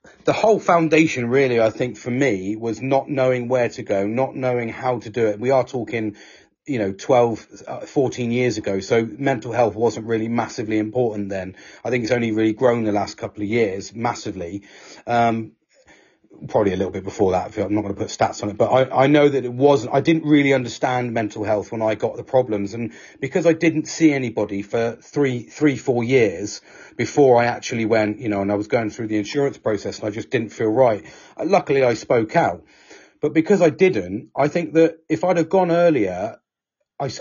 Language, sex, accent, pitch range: English, male, British, 105-135 Hz